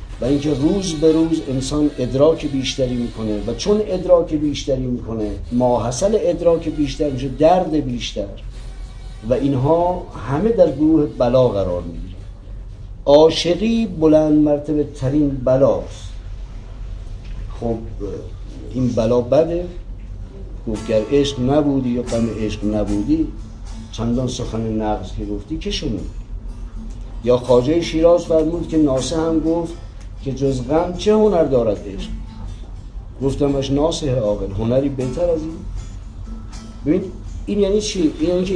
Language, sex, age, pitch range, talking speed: Persian, male, 50-69, 105-160 Hz, 120 wpm